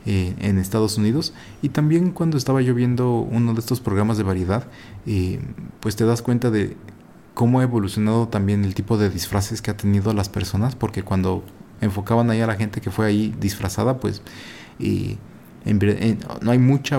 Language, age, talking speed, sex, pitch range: Spanish, 30-49, 185 wpm, male, 100-120 Hz